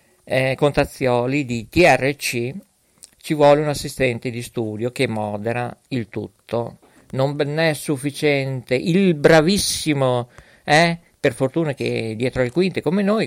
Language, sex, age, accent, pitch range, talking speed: Italian, male, 50-69, native, 120-155 Hz, 125 wpm